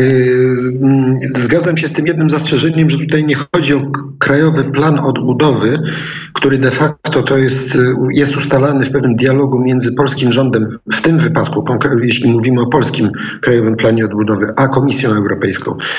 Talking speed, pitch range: 145 wpm, 120-140 Hz